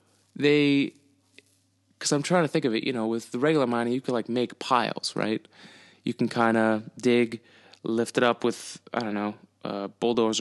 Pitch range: 105-130 Hz